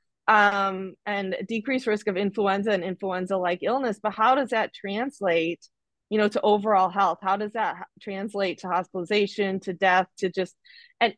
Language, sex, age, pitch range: English, female, 20-39, 190-225 Hz